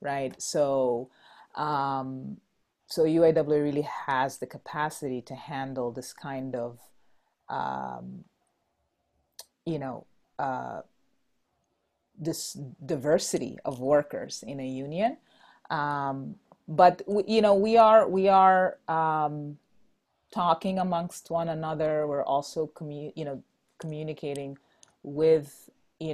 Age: 30-49